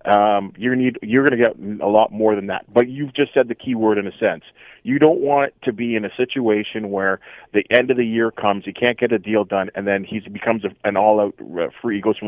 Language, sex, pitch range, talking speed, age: English, male, 100-120 Hz, 265 wpm, 30-49